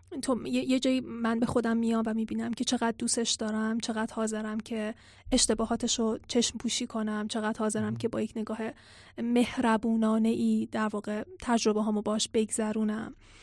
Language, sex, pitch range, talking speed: Persian, female, 220-255 Hz, 155 wpm